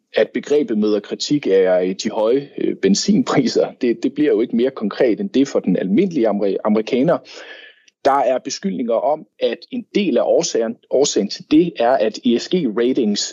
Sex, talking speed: male, 165 wpm